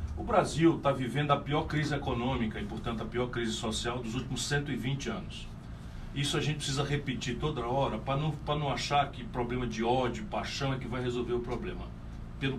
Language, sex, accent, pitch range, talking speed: Portuguese, male, Brazilian, 115-145 Hz, 195 wpm